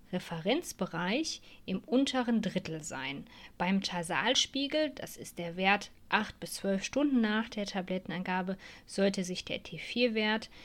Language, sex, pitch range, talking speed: German, female, 180-240 Hz, 125 wpm